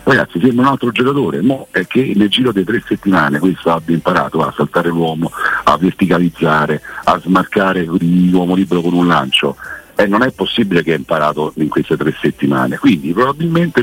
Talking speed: 180 wpm